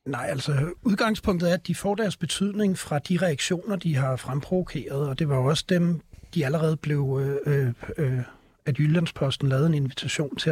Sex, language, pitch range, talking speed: male, Danish, 145-190 Hz, 165 wpm